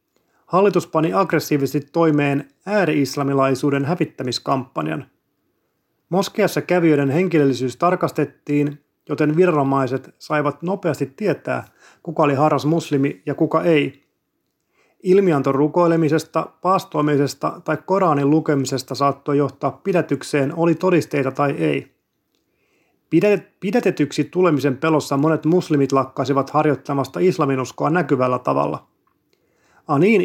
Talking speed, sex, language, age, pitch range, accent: 90 wpm, male, Finnish, 30-49, 140-170 Hz, native